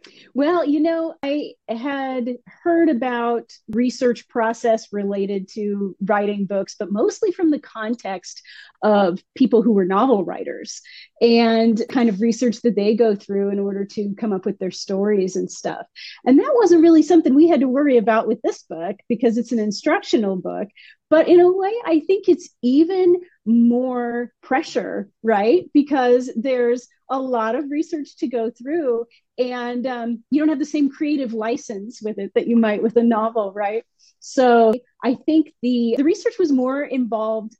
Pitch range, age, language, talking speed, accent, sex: 220-300 Hz, 30-49, English, 170 wpm, American, female